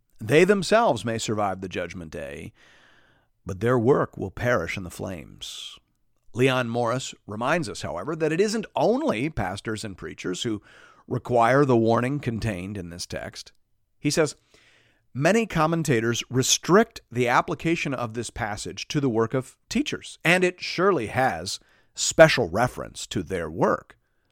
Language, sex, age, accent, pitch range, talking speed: English, male, 40-59, American, 110-150 Hz, 145 wpm